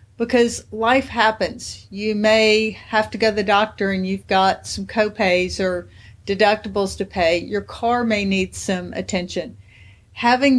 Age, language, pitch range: 50-69, English, 205-245 Hz